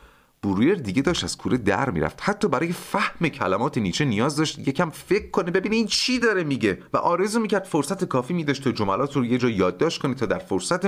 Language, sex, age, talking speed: Persian, male, 30-49, 215 wpm